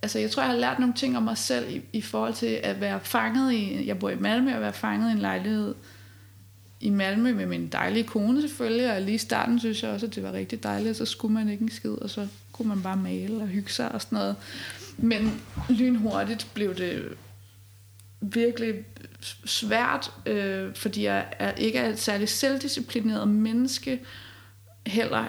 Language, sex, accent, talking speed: Danish, female, native, 195 wpm